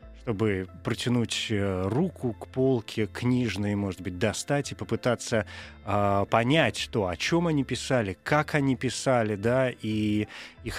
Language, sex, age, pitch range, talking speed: Russian, male, 30-49, 110-155 Hz, 135 wpm